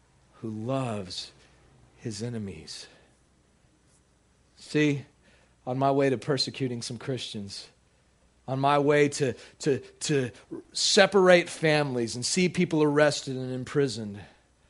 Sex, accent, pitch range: male, American, 110-155 Hz